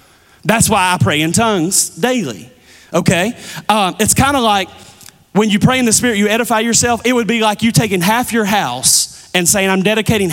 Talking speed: 205 wpm